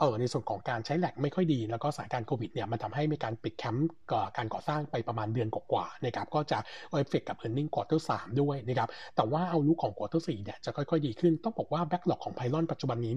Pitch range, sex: 120-155 Hz, male